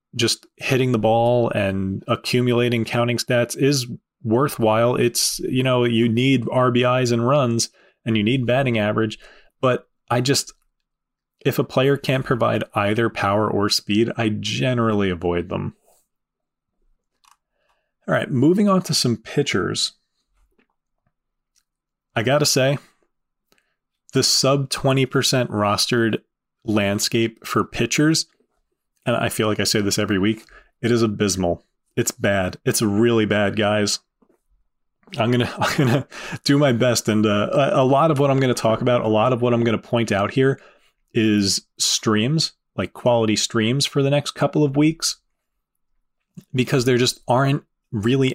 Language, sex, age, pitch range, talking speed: English, male, 30-49, 110-130 Hz, 150 wpm